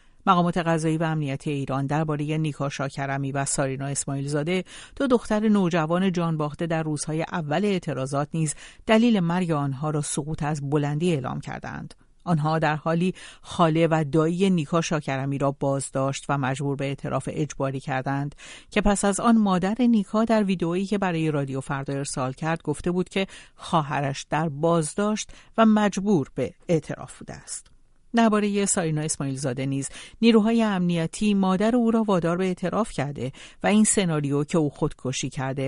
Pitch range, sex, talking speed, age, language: 140-185 Hz, female, 155 wpm, 60-79, Persian